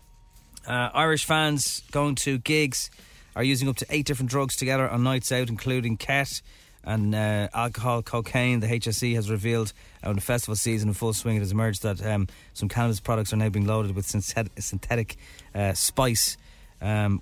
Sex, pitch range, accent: male, 105-135 Hz, Irish